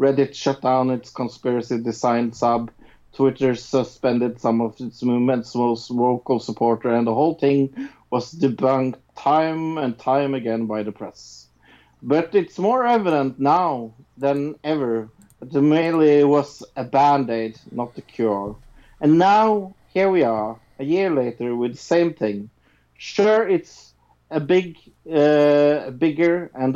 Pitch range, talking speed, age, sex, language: 120-170 Hz, 145 wpm, 50-69, male, English